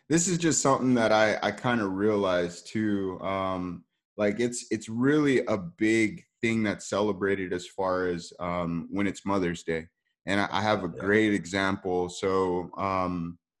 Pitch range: 90-105 Hz